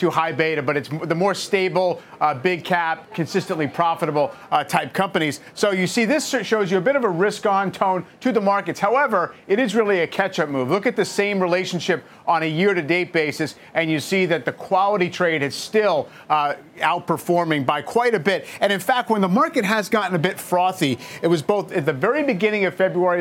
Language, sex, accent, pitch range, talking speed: English, male, American, 165-205 Hz, 220 wpm